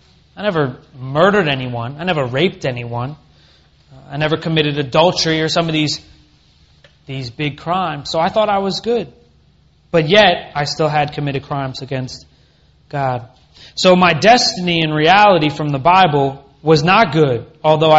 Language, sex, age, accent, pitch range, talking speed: English, male, 30-49, American, 140-200 Hz, 155 wpm